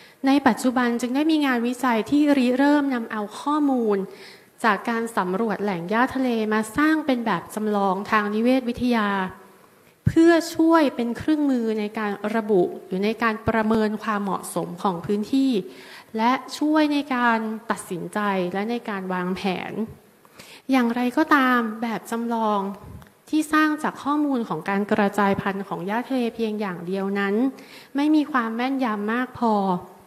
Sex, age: female, 30-49